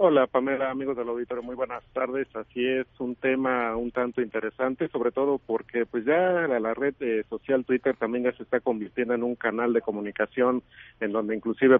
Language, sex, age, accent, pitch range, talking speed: Spanish, male, 50-69, Mexican, 110-130 Hz, 200 wpm